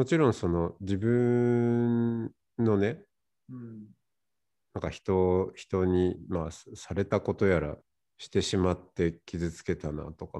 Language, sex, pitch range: Japanese, male, 90-115 Hz